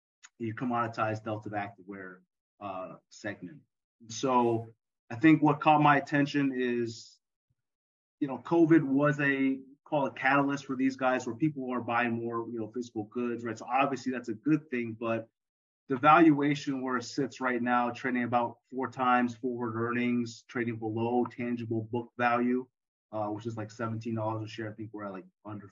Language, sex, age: English, male, 30-49